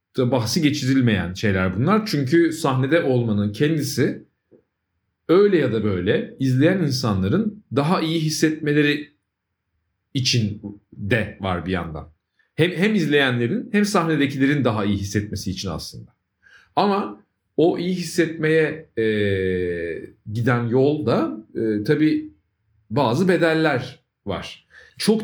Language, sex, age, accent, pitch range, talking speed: Turkish, male, 40-59, native, 105-155 Hz, 110 wpm